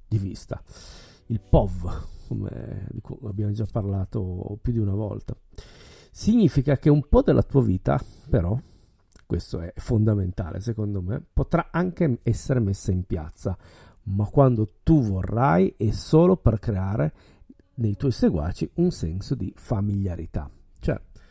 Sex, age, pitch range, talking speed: male, 50-69, 95-130 Hz, 130 wpm